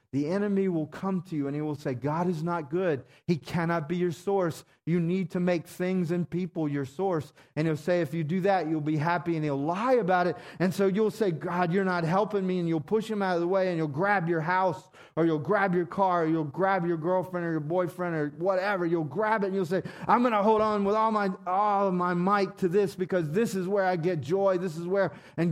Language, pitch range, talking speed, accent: English, 120-185 Hz, 255 wpm, American